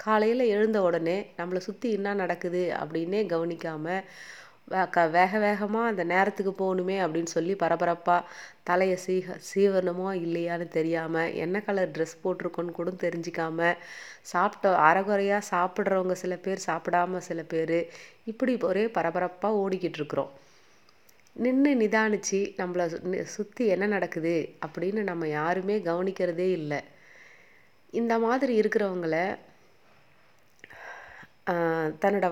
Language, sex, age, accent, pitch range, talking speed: Tamil, female, 30-49, native, 170-205 Hz, 100 wpm